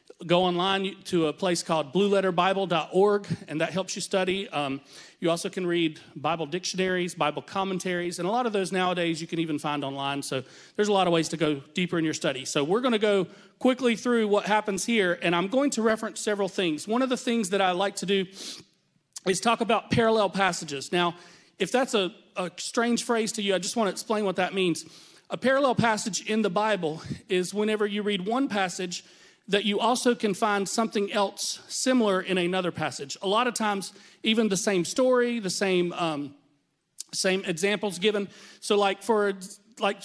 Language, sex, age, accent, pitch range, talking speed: English, male, 40-59, American, 175-210 Hz, 200 wpm